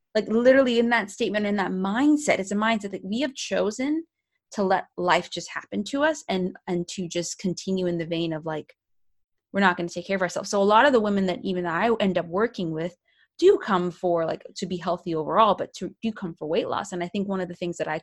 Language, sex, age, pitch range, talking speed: English, female, 20-39, 180-230 Hz, 255 wpm